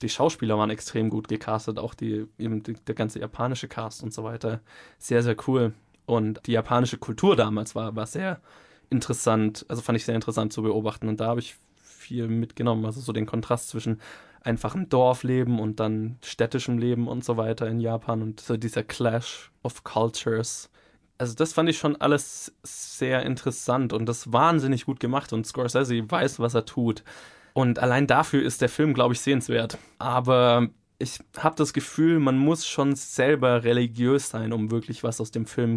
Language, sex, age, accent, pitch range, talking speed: German, male, 20-39, German, 110-130 Hz, 180 wpm